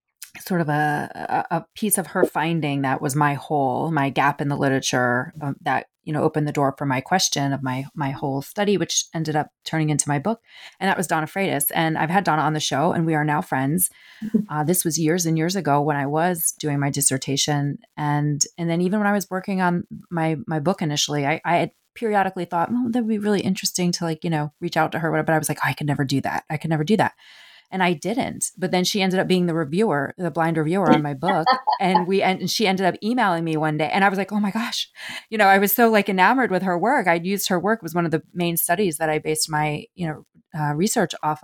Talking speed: 260 wpm